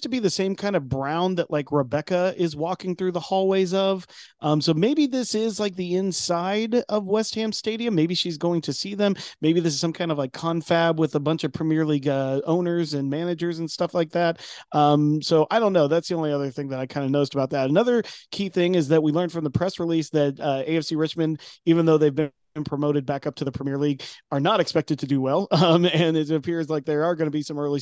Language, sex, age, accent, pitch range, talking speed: English, male, 30-49, American, 145-175 Hz, 255 wpm